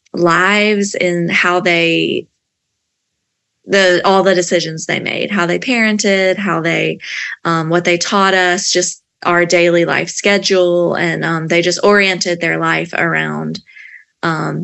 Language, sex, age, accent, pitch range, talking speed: English, female, 20-39, American, 170-190 Hz, 140 wpm